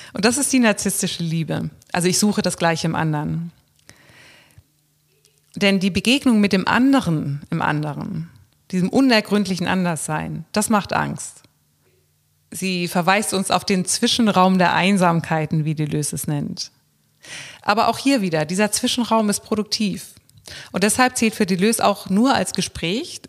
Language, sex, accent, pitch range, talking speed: German, female, German, 160-205 Hz, 145 wpm